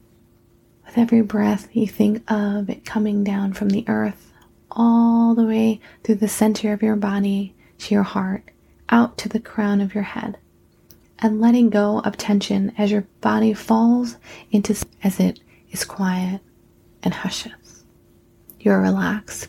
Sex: female